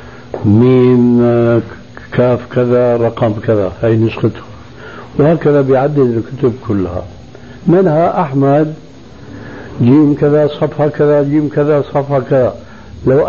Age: 60-79